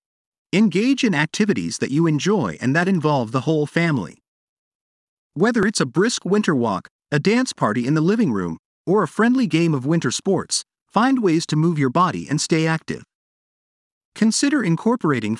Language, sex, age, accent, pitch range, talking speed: English, male, 40-59, American, 150-210 Hz, 170 wpm